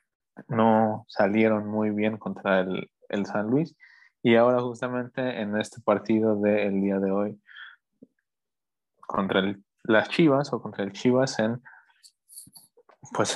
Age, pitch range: 20-39, 100-120 Hz